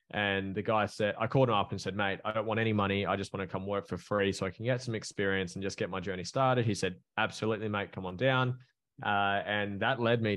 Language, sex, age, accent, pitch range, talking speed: English, male, 20-39, Australian, 100-115 Hz, 280 wpm